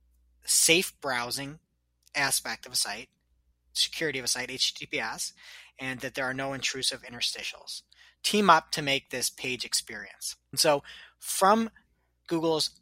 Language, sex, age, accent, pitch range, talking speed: English, male, 30-49, American, 130-190 Hz, 135 wpm